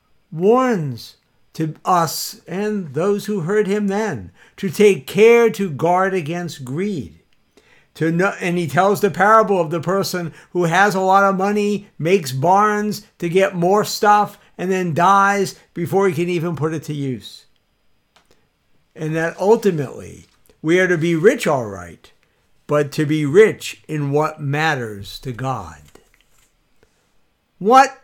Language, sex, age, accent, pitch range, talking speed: English, male, 60-79, American, 150-195 Hz, 145 wpm